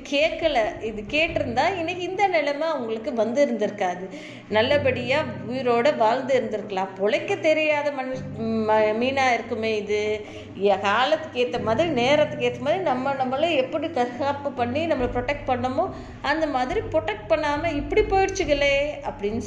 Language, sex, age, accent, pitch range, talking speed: Tamil, female, 20-39, native, 220-295 Hz, 125 wpm